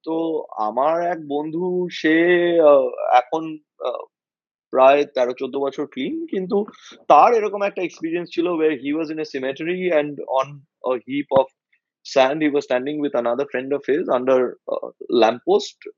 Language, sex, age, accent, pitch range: Bengali, male, 20-39, native, 145-210 Hz